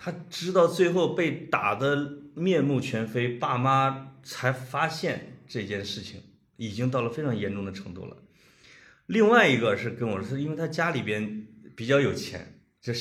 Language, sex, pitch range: Chinese, male, 115-180 Hz